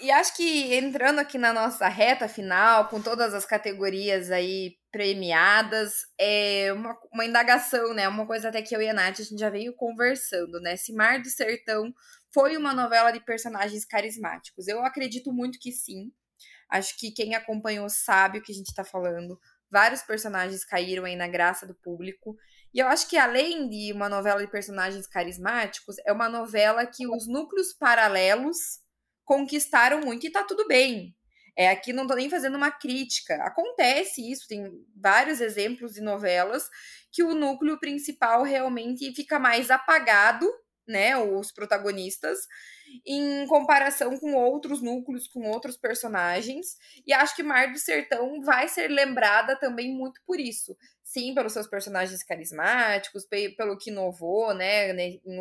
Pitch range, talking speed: 205-260 Hz, 160 wpm